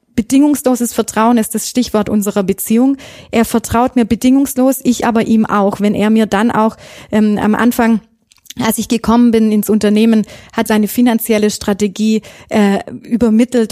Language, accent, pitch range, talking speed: German, German, 210-240 Hz, 155 wpm